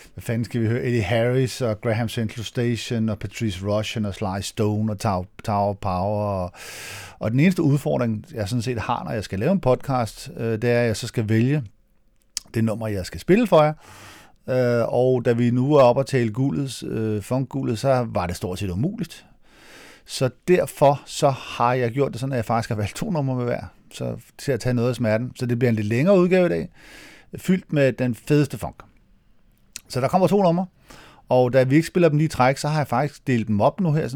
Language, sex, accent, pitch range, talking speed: Danish, male, native, 110-145 Hz, 220 wpm